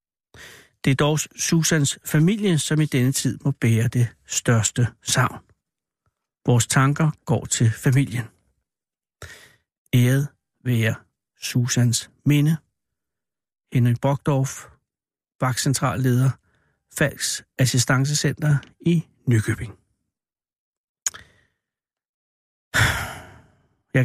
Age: 60-79